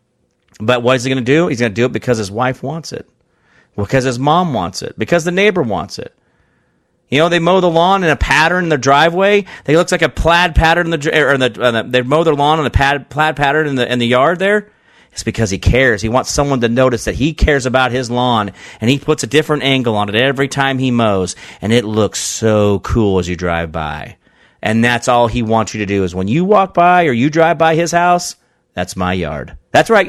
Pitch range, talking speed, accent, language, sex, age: 110-175 Hz, 245 wpm, American, English, male, 40-59